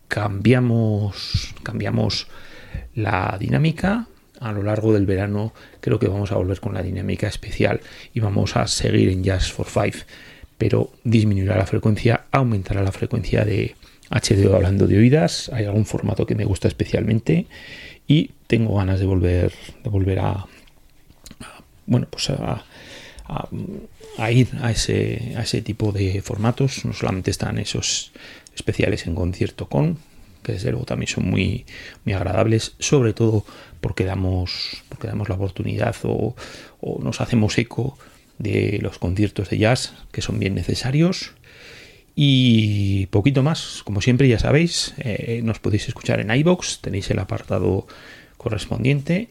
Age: 30-49